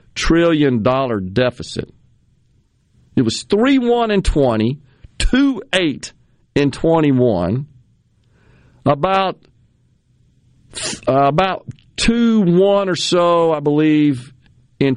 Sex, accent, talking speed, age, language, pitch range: male, American, 90 wpm, 50-69, English, 125-195 Hz